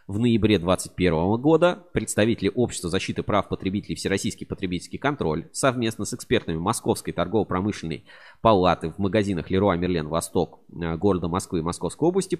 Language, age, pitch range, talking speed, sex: Russian, 20-39, 85-120 Hz, 135 wpm, male